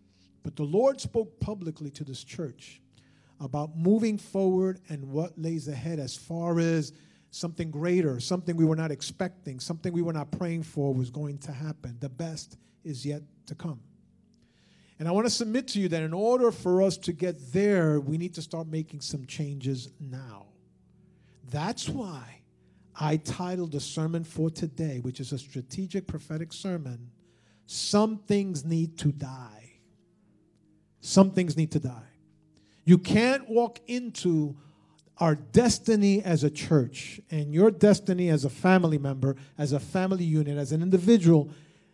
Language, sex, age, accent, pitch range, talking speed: English, male, 50-69, American, 145-190 Hz, 160 wpm